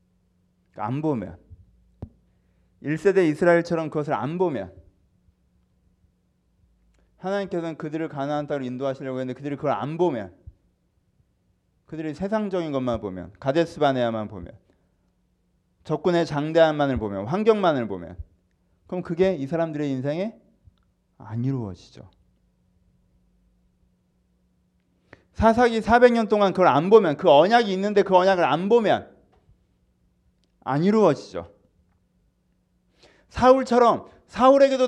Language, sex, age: Korean, male, 30-49